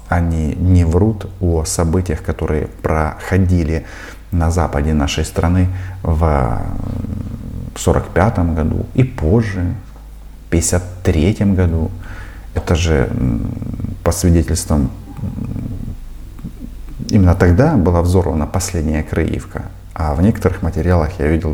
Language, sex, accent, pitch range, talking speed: Russian, male, native, 85-100 Hz, 100 wpm